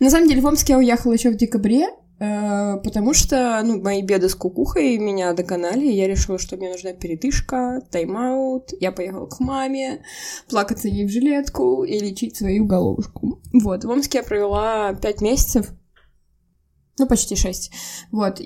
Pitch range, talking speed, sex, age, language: 195-255 Hz, 165 wpm, female, 20-39, Russian